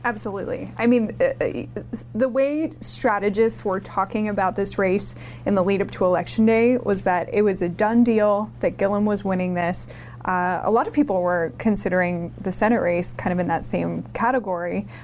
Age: 20-39